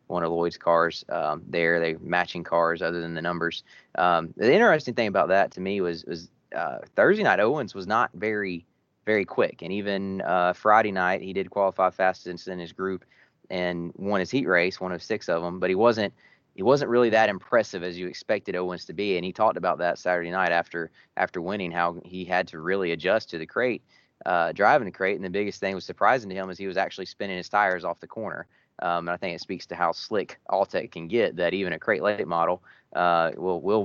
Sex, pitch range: male, 85-95 Hz